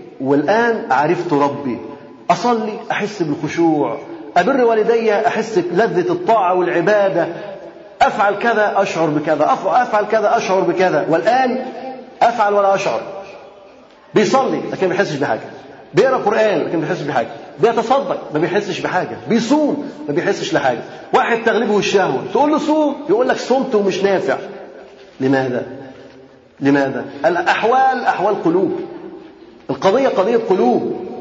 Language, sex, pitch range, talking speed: Arabic, male, 175-250 Hz, 115 wpm